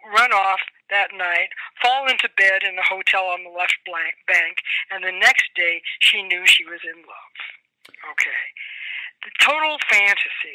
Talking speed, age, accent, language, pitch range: 165 wpm, 60-79, American, English, 185-305 Hz